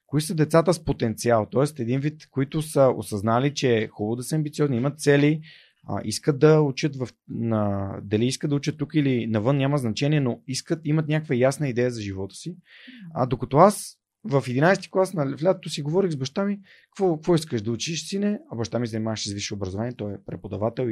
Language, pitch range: Bulgarian, 115-155 Hz